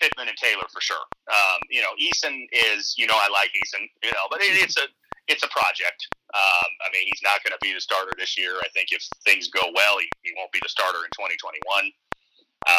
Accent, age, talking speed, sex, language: American, 30-49, 235 wpm, male, English